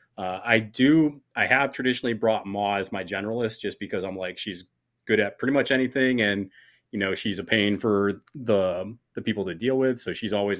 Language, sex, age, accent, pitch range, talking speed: English, male, 30-49, American, 100-120 Hz, 205 wpm